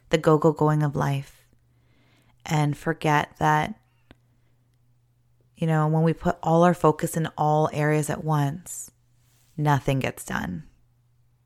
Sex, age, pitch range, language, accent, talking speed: female, 20-39, 125-160 Hz, English, American, 130 wpm